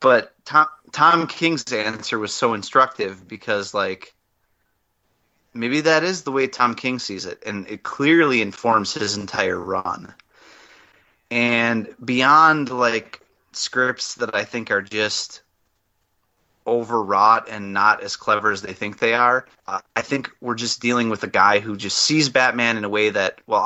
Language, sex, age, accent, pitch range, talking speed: English, male, 30-49, American, 95-120 Hz, 155 wpm